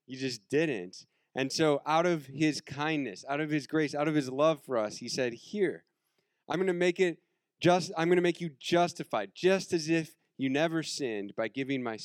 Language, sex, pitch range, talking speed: English, male, 110-150 Hz, 215 wpm